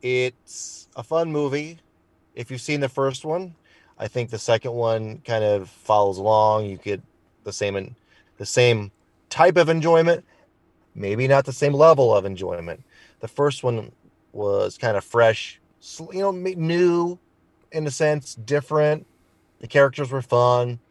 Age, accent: 30-49, American